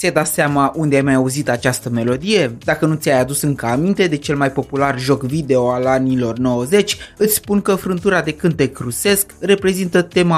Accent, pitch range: native, 135-175 Hz